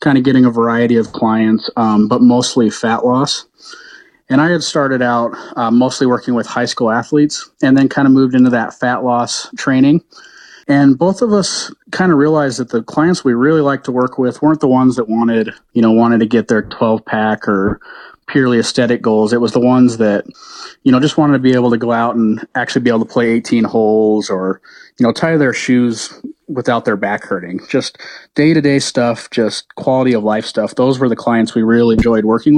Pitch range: 110-135 Hz